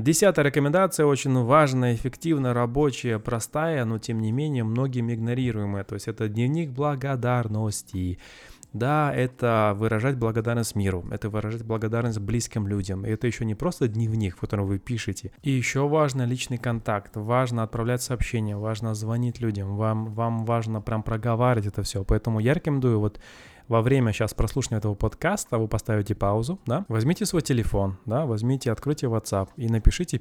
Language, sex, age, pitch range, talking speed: Russian, male, 20-39, 105-125 Hz, 155 wpm